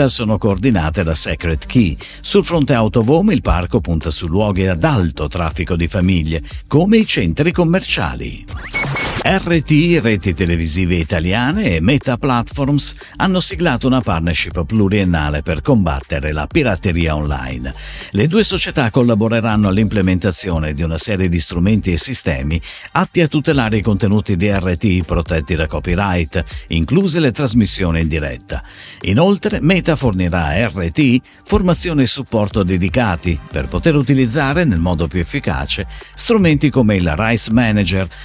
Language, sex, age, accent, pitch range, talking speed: Italian, male, 50-69, native, 85-135 Hz, 135 wpm